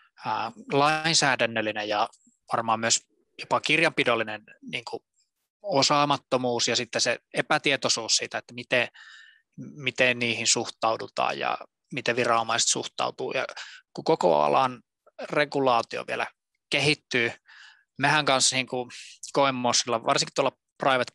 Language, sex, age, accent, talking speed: Finnish, male, 20-39, native, 105 wpm